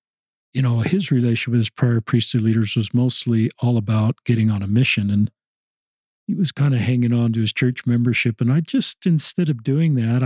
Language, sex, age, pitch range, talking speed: English, male, 50-69, 115-130 Hz, 205 wpm